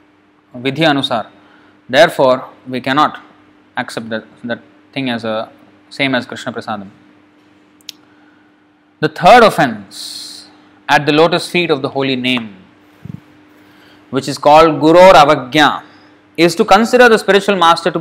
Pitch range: 130-160 Hz